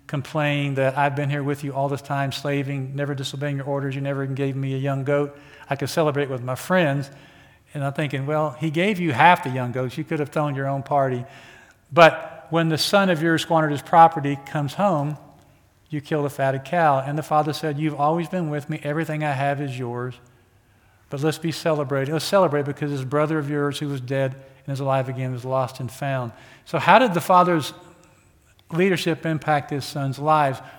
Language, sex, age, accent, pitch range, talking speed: English, male, 50-69, American, 125-155 Hz, 210 wpm